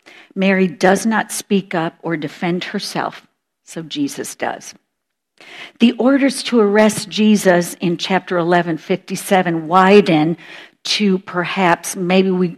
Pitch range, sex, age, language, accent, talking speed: 155-195 Hz, female, 50-69, English, American, 115 wpm